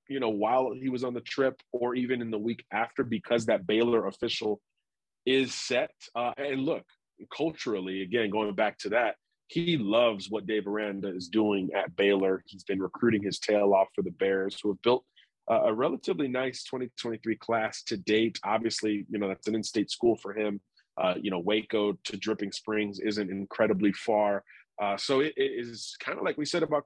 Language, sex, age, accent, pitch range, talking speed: English, male, 30-49, American, 100-125 Hz, 195 wpm